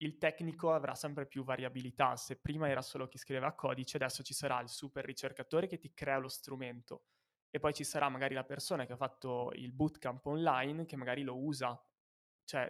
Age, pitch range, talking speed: 20-39, 130-145 Hz, 200 wpm